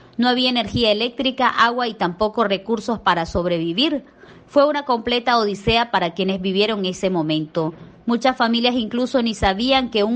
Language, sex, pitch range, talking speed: Spanish, female, 190-245 Hz, 155 wpm